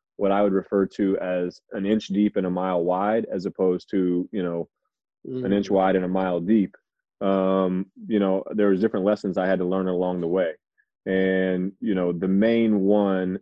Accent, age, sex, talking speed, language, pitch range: American, 30-49, male, 200 wpm, English, 90-100 Hz